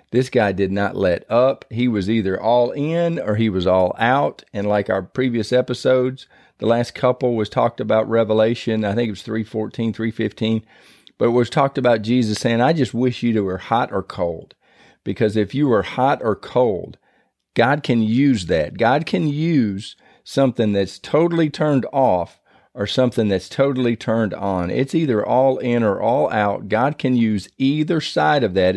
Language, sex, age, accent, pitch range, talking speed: English, male, 40-59, American, 105-135 Hz, 185 wpm